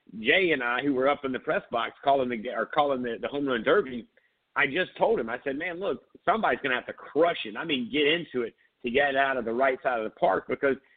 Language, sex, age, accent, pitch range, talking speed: English, male, 50-69, American, 130-155 Hz, 275 wpm